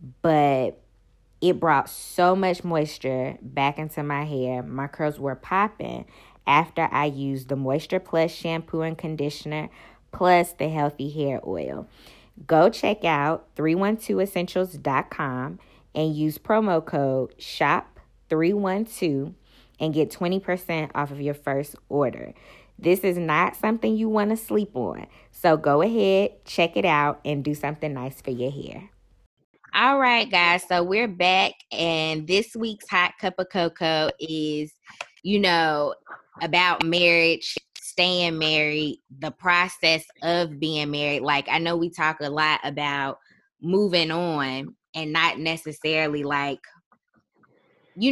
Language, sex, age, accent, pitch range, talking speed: English, female, 20-39, American, 145-180 Hz, 135 wpm